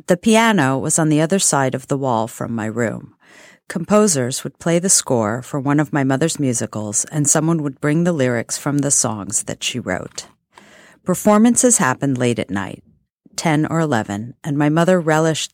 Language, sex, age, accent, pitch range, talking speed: English, female, 40-59, American, 130-170 Hz, 185 wpm